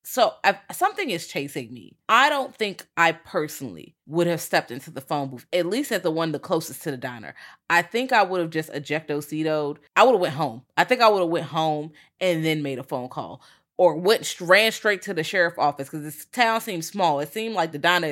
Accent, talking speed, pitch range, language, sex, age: American, 230 wpm, 150-190 Hz, English, female, 20-39